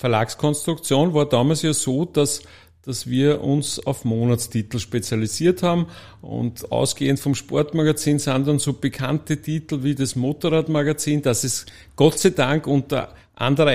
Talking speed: 140 wpm